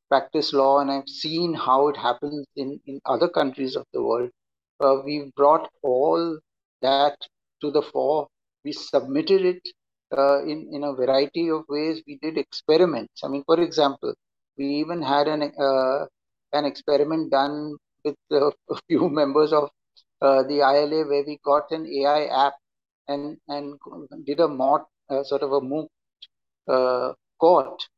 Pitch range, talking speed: 140-155 Hz, 160 wpm